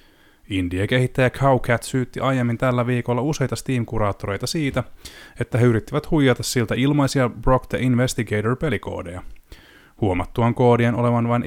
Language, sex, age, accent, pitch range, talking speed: Finnish, male, 20-39, native, 100-130 Hz, 120 wpm